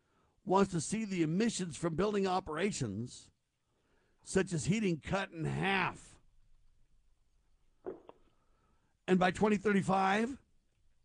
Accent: American